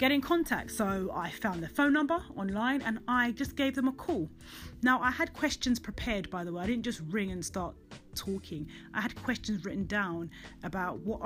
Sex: female